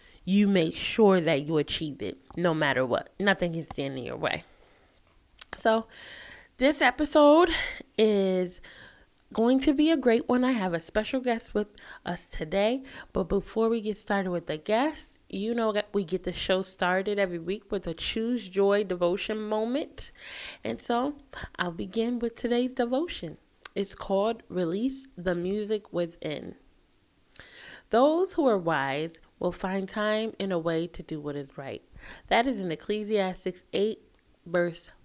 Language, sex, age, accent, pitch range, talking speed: English, female, 20-39, American, 170-225 Hz, 160 wpm